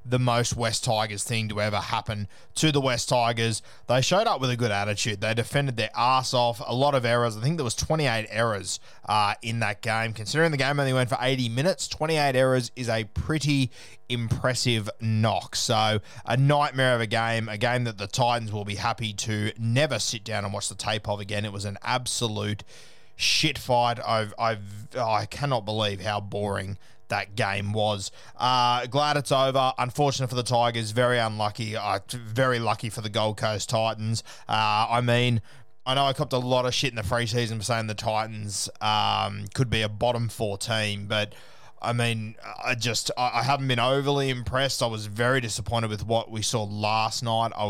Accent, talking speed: Australian, 200 wpm